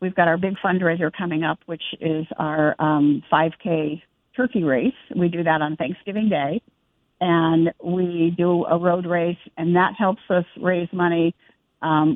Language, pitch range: English, 160-185 Hz